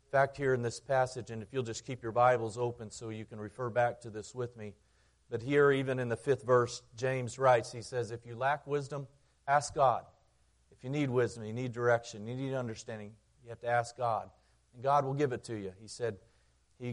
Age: 40-59